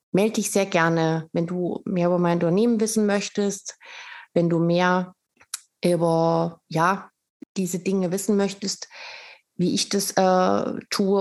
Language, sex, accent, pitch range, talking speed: German, female, German, 165-200 Hz, 135 wpm